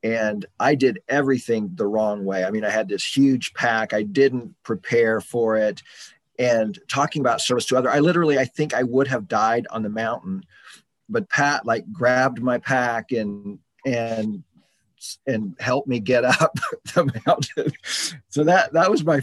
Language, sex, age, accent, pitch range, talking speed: English, male, 40-59, American, 105-130 Hz, 175 wpm